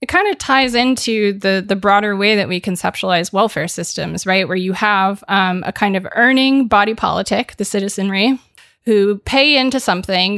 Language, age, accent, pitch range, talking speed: English, 20-39, American, 190-225 Hz, 180 wpm